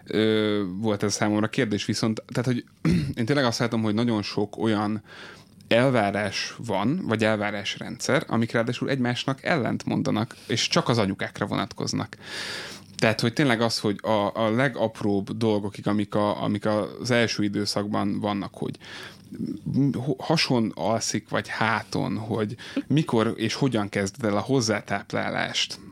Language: Hungarian